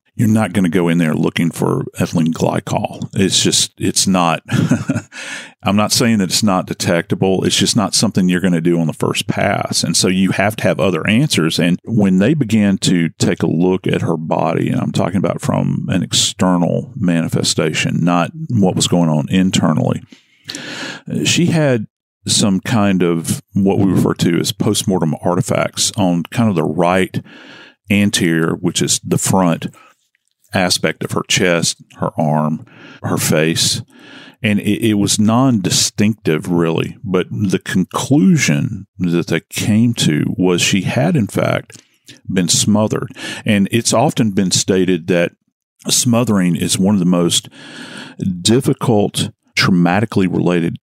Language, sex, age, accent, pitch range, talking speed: English, male, 40-59, American, 85-105 Hz, 155 wpm